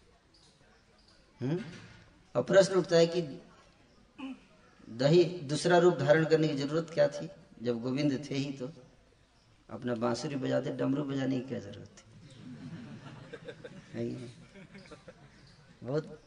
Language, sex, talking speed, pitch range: Hindi, female, 105 wpm, 110-150 Hz